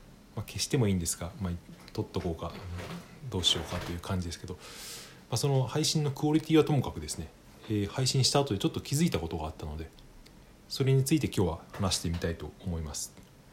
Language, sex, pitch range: Japanese, male, 85-125 Hz